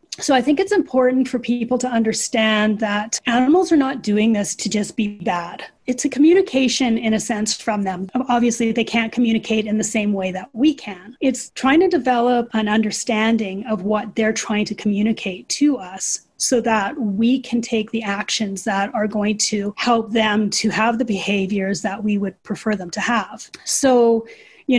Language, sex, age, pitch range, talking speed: English, female, 30-49, 210-250 Hz, 190 wpm